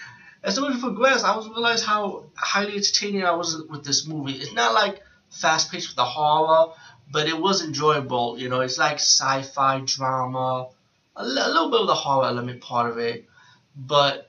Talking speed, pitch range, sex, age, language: 185 wpm, 130-155 Hz, male, 20-39, English